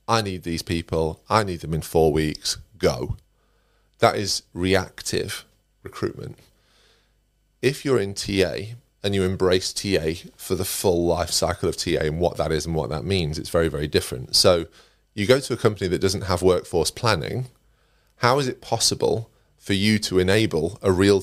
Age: 30-49